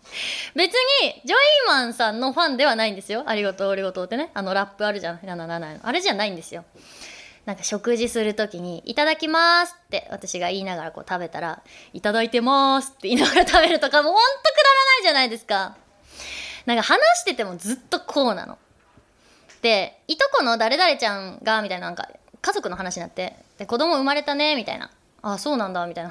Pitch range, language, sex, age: 205-300 Hz, Japanese, female, 20-39